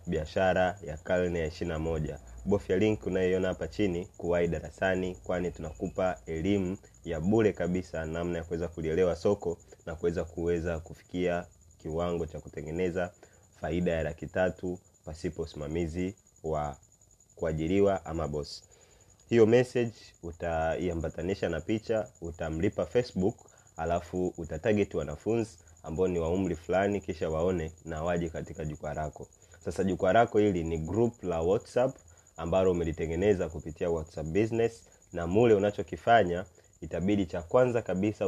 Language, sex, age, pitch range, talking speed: Swahili, male, 30-49, 80-100 Hz, 130 wpm